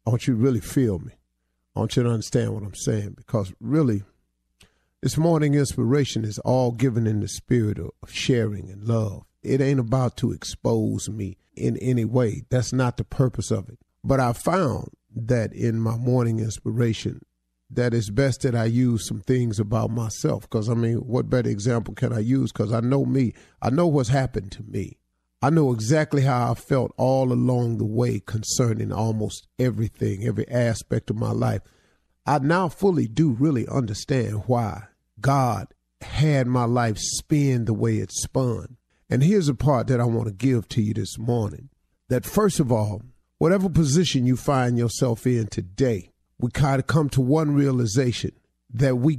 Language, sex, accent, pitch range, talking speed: English, male, American, 110-130 Hz, 180 wpm